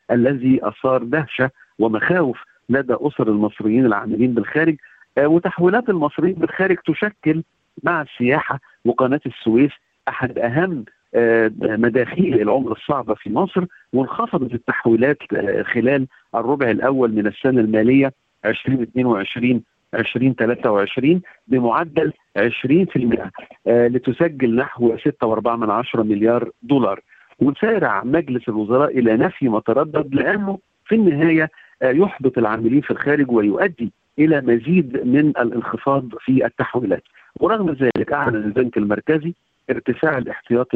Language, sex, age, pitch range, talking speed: Arabic, male, 50-69, 115-155 Hz, 105 wpm